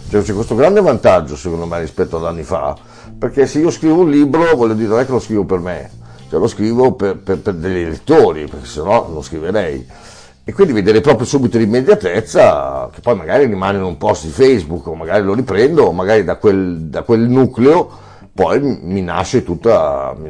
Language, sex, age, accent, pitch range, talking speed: Italian, male, 50-69, native, 85-115 Hz, 195 wpm